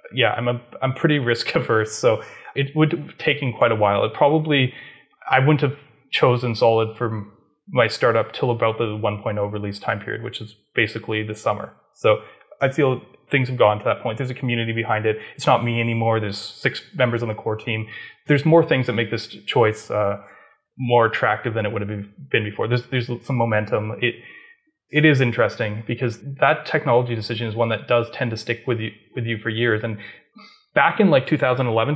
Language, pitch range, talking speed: English, 115-140 Hz, 205 wpm